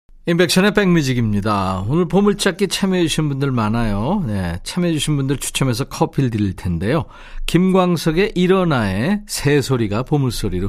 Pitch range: 115-175 Hz